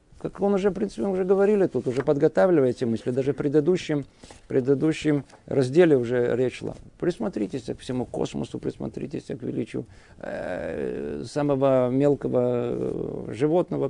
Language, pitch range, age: Russian, 120-160 Hz, 50-69